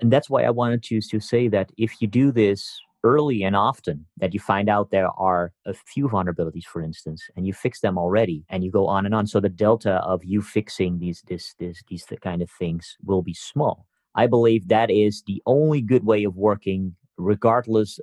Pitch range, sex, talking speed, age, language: 95-110 Hz, male, 215 wpm, 30-49, English